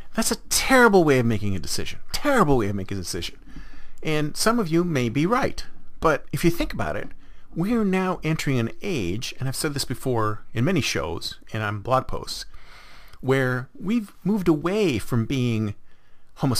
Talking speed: 190 wpm